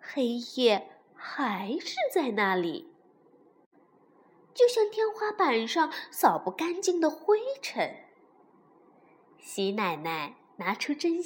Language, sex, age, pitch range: Chinese, female, 20-39, 250-385 Hz